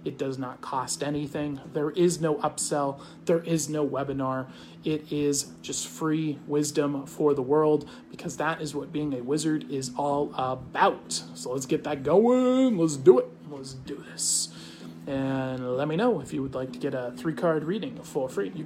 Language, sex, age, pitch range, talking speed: English, male, 30-49, 140-175 Hz, 190 wpm